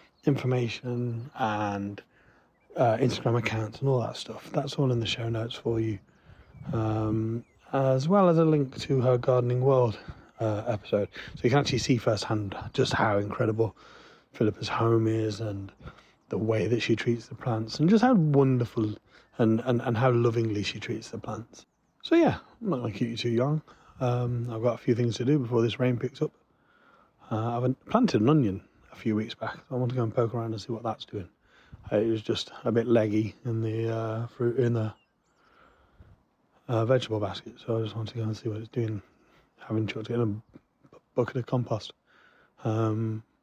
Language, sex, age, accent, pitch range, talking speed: English, male, 30-49, British, 110-125 Hz, 195 wpm